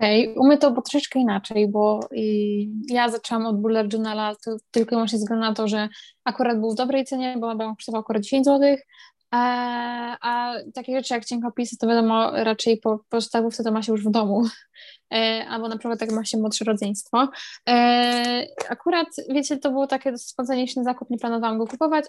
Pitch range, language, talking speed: 220-255 Hz, Polish, 185 wpm